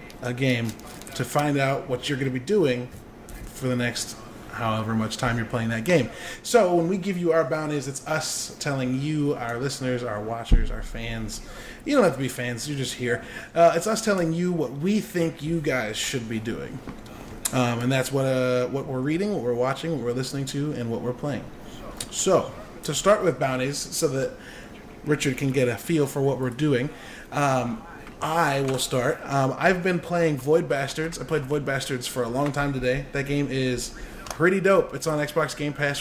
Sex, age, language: male, 20-39, English